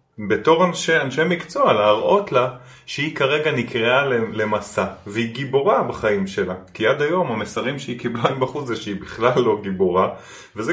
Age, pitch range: 20-39, 95-145 Hz